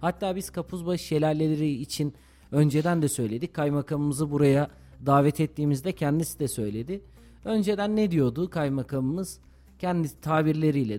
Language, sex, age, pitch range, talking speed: Turkish, male, 40-59, 140-190 Hz, 115 wpm